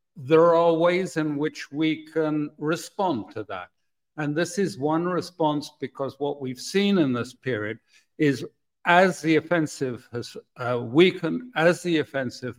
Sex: male